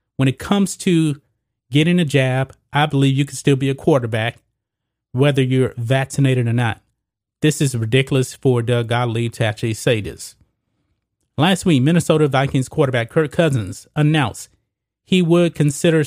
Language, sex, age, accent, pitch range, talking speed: English, male, 30-49, American, 120-150 Hz, 155 wpm